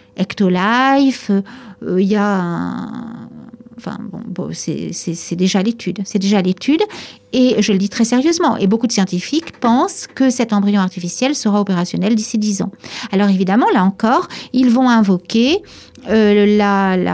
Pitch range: 195-240 Hz